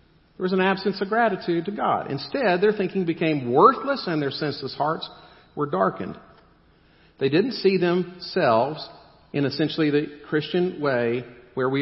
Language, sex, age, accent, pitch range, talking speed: English, male, 50-69, American, 110-145 Hz, 150 wpm